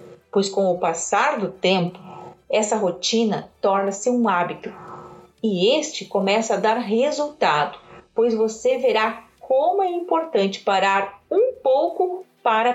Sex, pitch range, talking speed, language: female, 200-265 Hz, 125 wpm, Portuguese